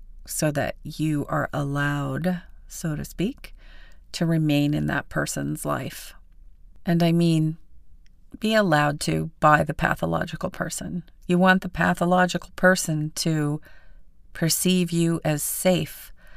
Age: 40-59